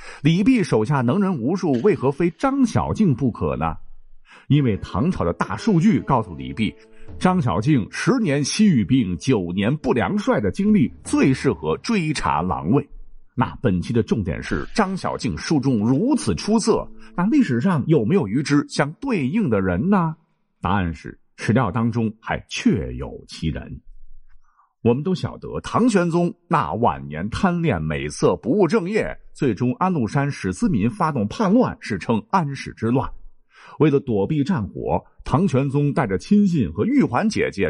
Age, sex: 50-69, male